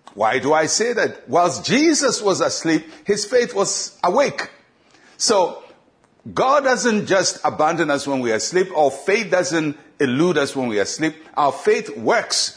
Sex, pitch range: male, 145-195 Hz